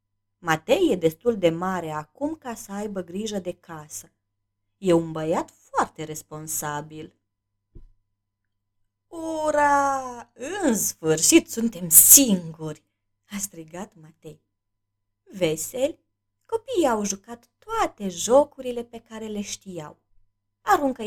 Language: Romanian